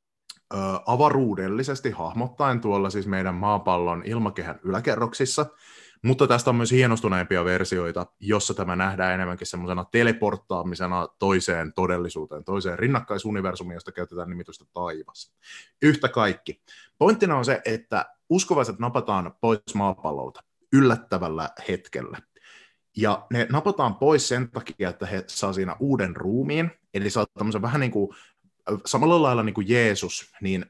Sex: male